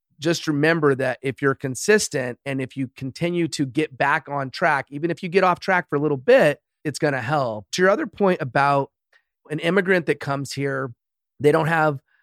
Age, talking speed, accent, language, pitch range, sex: 30-49, 205 wpm, American, English, 135-160 Hz, male